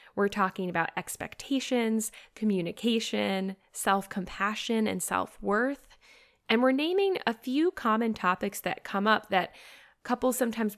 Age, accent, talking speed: 10-29, American, 115 wpm